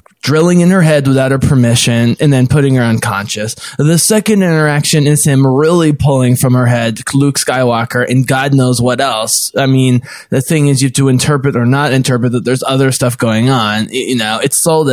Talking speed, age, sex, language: 205 wpm, 20-39, male, English